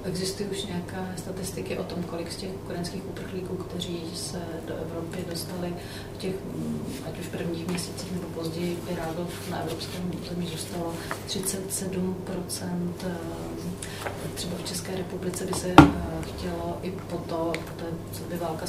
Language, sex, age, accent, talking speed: Czech, female, 30-49, native, 140 wpm